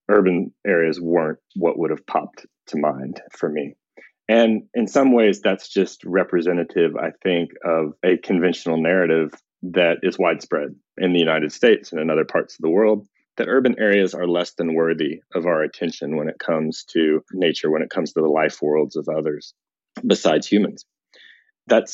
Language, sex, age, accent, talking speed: English, male, 30-49, American, 180 wpm